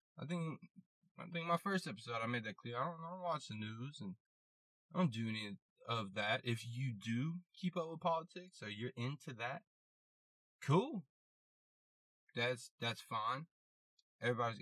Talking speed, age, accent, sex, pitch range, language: 170 wpm, 20-39, American, male, 110-135 Hz, English